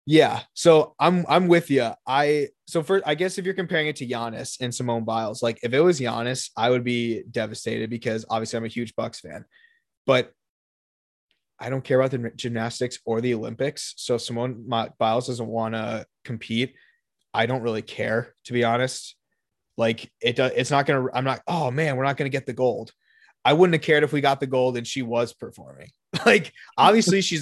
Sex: male